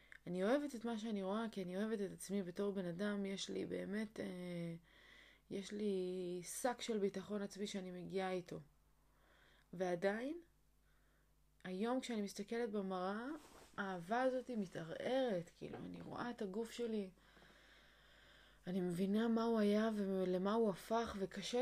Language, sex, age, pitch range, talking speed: Hebrew, female, 20-39, 190-230 Hz, 140 wpm